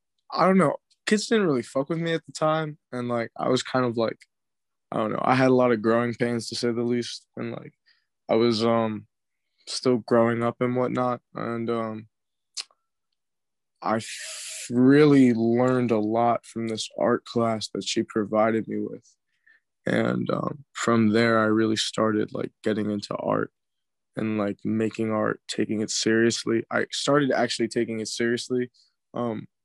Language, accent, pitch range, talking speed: English, American, 110-130 Hz, 170 wpm